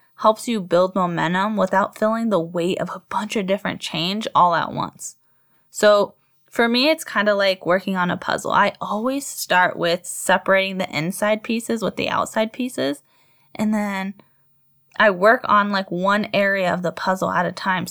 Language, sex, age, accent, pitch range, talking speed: English, female, 10-29, American, 180-215 Hz, 180 wpm